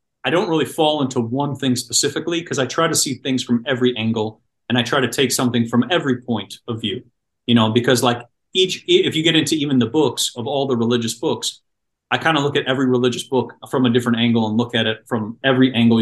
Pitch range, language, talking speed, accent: 115-135 Hz, English, 240 wpm, American